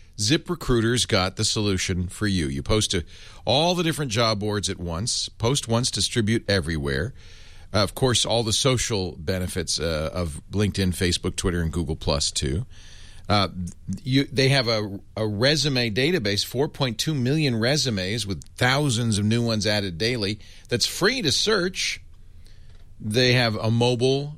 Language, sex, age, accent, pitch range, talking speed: English, male, 40-59, American, 90-120 Hz, 155 wpm